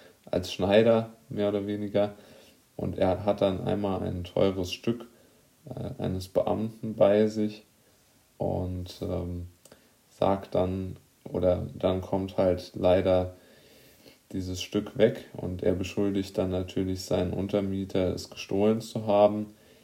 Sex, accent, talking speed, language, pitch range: male, German, 125 wpm, German, 90-105 Hz